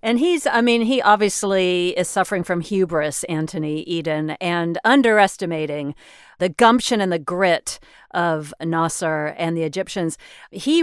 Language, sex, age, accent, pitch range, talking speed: English, female, 40-59, American, 170-220 Hz, 140 wpm